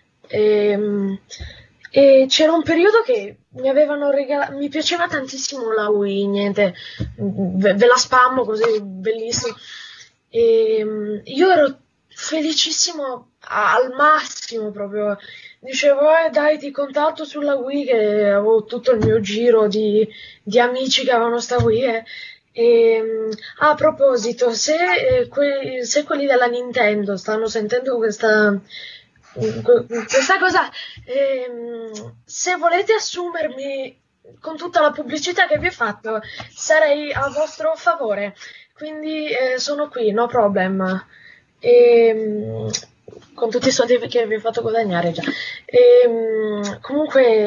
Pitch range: 220-300 Hz